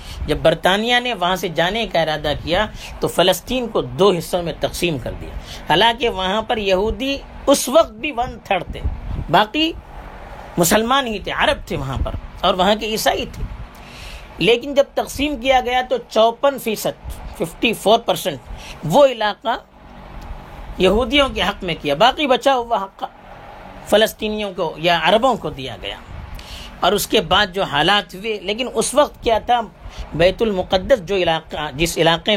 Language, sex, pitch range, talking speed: Urdu, female, 160-230 Hz, 160 wpm